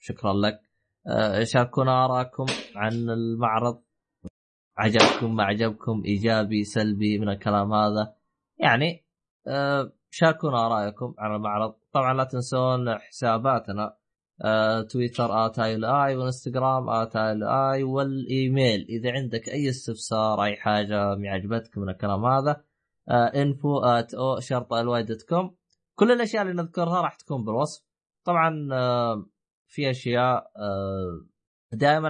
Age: 20-39